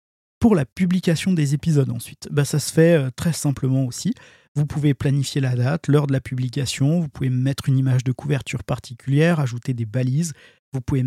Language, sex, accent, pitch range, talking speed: French, male, French, 130-160 Hz, 190 wpm